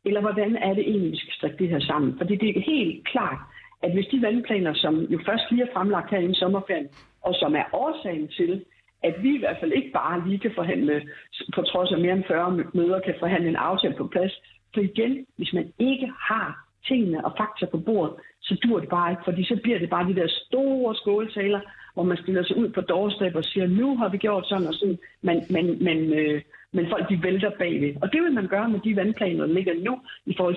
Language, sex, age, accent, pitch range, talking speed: Danish, female, 60-79, native, 175-225 Hz, 235 wpm